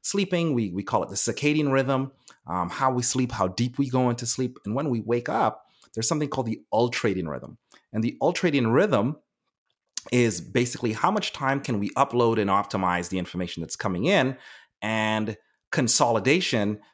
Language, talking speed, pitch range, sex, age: English, 175 wpm, 105-135 Hz, male, 30-49